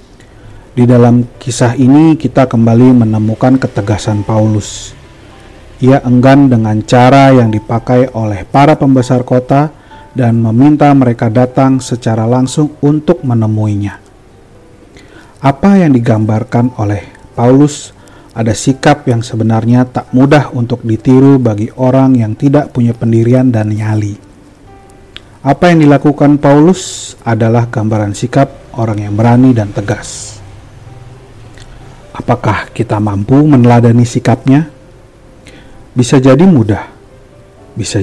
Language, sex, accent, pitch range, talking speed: Indonesian, male, native, 110-130 Hz, 110 wpm